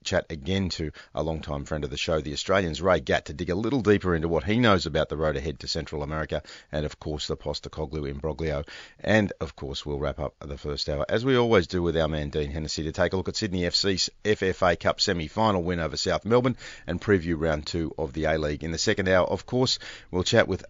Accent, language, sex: Australian, English, male